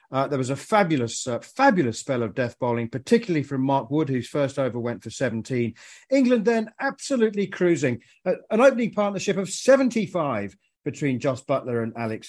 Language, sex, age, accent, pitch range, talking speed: English, male, 40-59, British, 130-190 Hz, 175 wpm